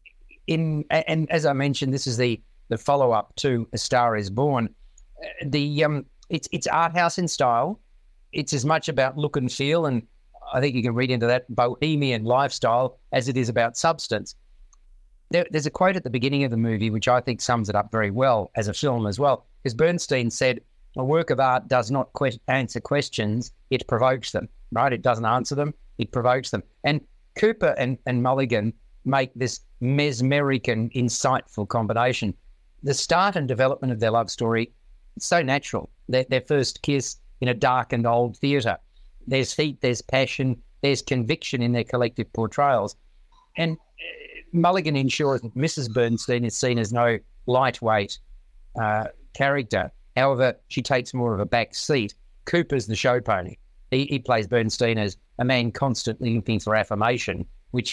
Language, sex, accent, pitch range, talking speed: English, male, Australian, 115-140 Hz, 175 wpm